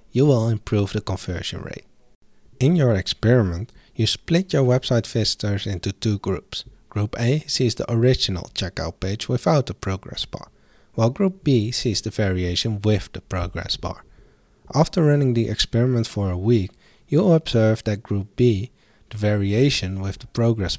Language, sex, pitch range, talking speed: English, male, 100-130 Hz, 160 wpm